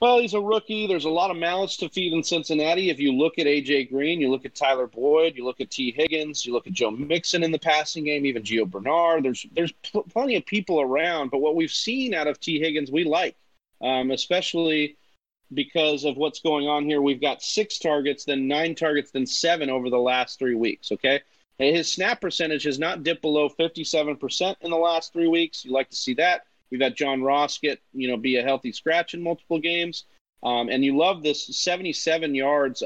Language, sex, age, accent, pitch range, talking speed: English, male, 30-49, American, 135-165 Hz, 220 wpm